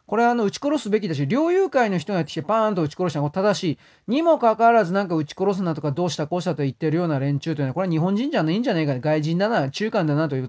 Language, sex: Japanese, male